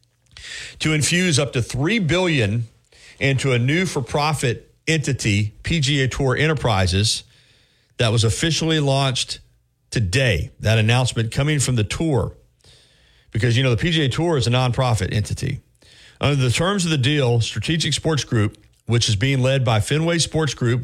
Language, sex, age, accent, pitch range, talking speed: English, male, 40-59, American, 120-150 Hz, 150 wpm